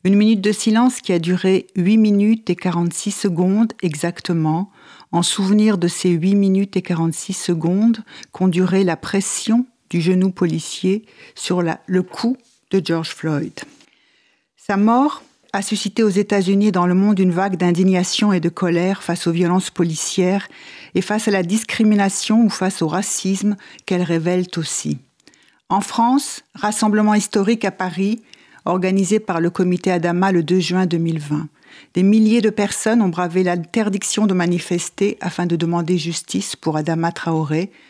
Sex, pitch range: female, 170-205 Hz